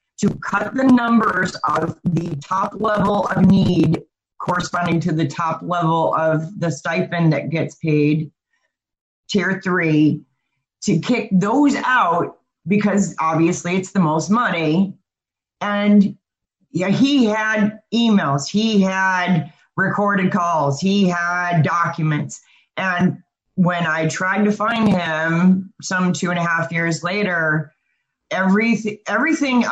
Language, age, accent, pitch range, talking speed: English, 40-59, American, 160-200 Hz, 125 wpm